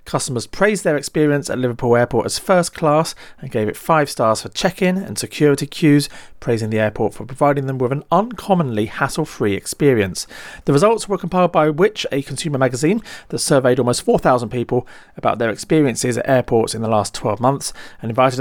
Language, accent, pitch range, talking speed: English, British, 125-170 Hz, 185 wpm